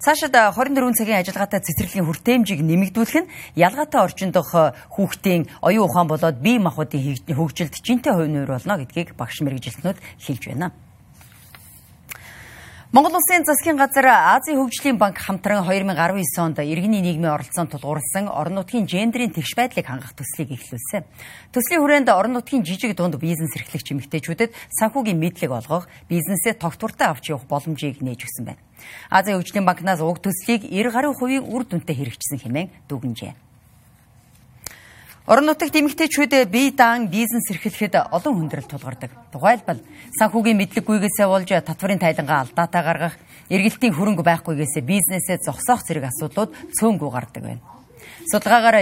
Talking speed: 125 wpm